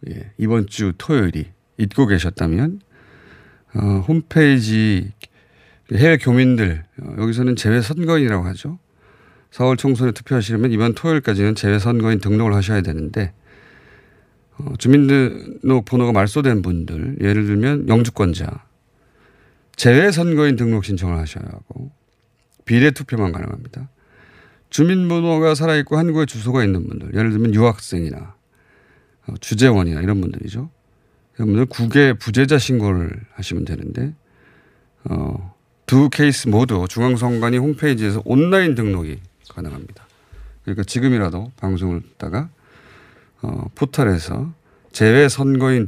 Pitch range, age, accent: 100-135 Hz, 40-59, native